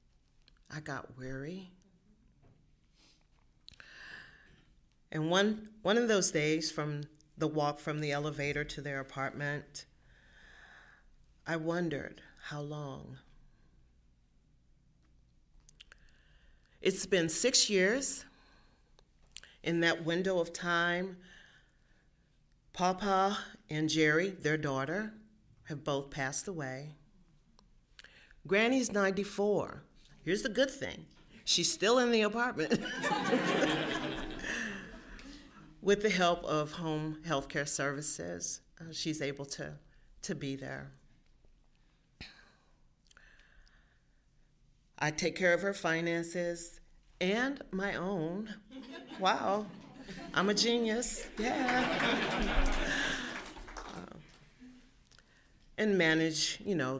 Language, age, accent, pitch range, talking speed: English, 40-59, American, 145-195 Hz, 90 wpm